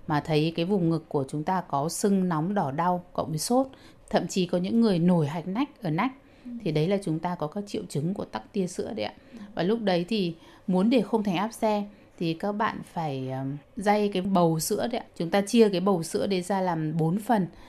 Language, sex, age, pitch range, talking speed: Vietnamese, female, 20-39, 170-220 Hz, 245 wpm